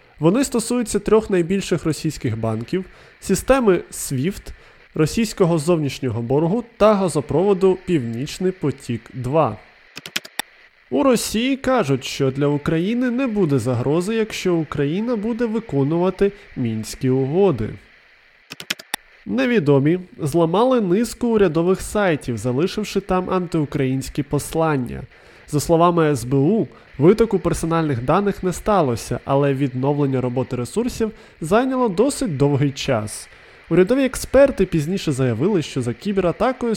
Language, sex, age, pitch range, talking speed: Ukrainian, male, 20-39, 140-210 Hz, 100 wpm